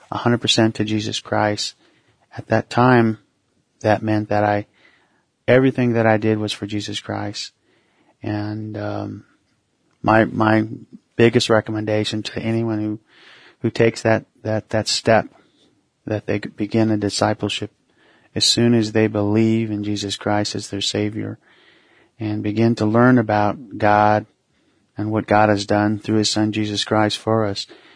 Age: 40-59